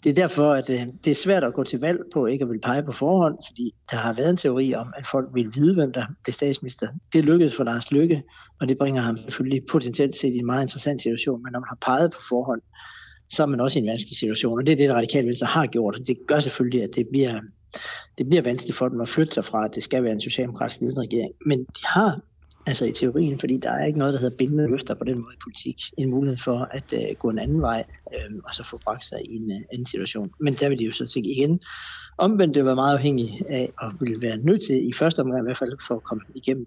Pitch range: 120-145 Hz